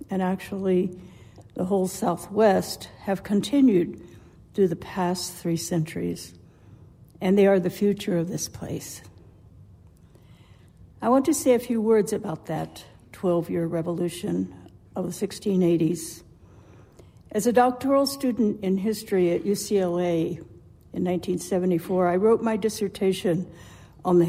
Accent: American